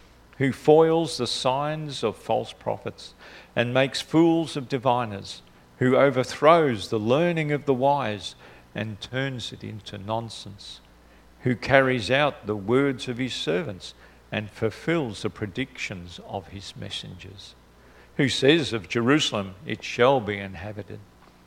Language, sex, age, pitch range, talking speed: English, male, 50-69, 95-130 Hz, 130 wpm